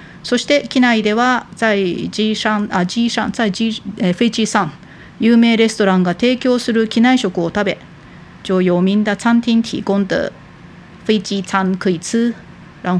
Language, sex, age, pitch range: Japanese, female, 40-59, 185-235 Hz